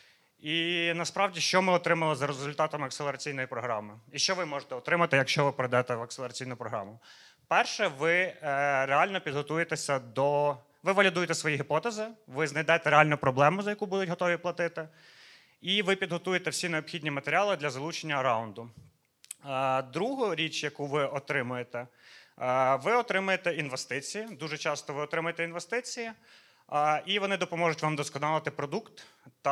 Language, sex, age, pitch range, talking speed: Ukrainian, male, 30-49, 140-170 Hz, 140 wpm